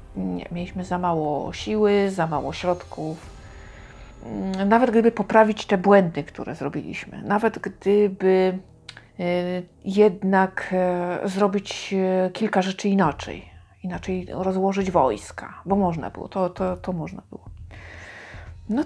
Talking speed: 110 wpm